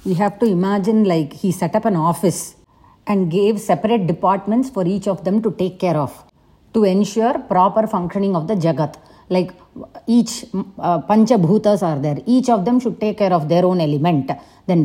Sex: female